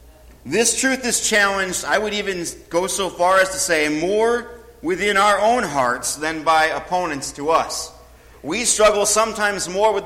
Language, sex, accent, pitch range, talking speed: English, male, American, 115-180 Hz, 165 wpm